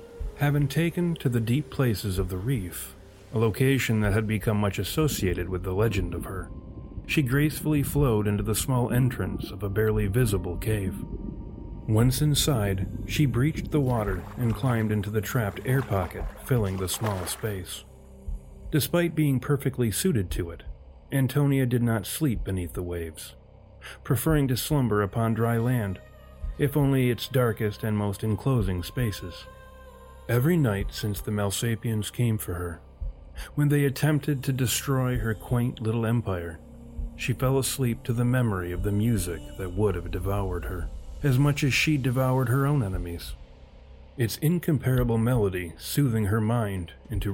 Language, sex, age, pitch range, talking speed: English, male, 40-59, 90-130 Hz, 155 wpm